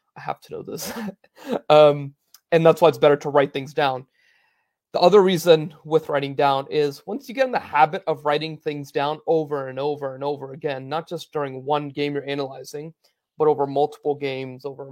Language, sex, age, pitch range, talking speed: English, male, 20-39, 135-155 Hz, 200 wpm